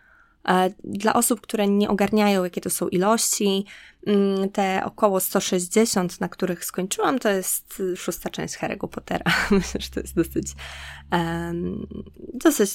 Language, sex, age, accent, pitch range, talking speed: Polish, female, 20-39, native, 170-200 Hz, 125 wpm